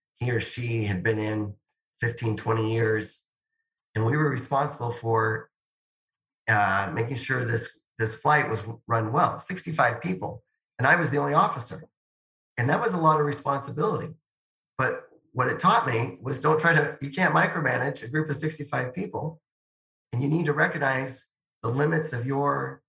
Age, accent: 30-49, American